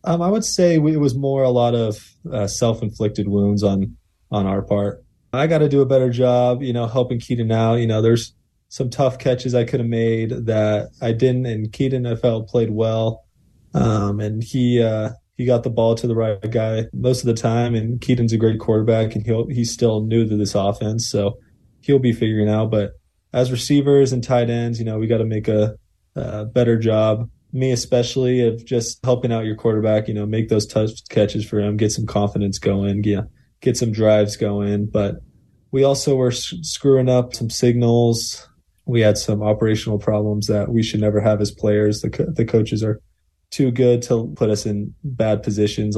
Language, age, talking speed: English, 20-39, 210 wpm